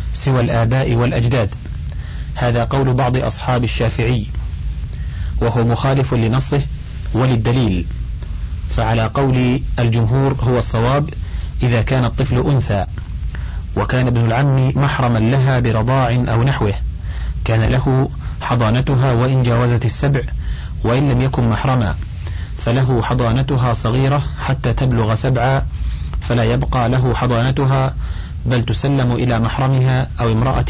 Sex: male